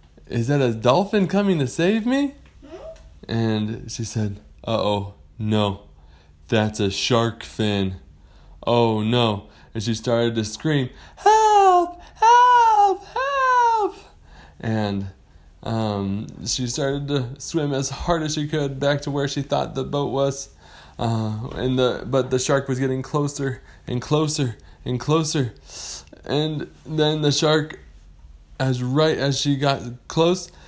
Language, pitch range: English, 110-170 Hz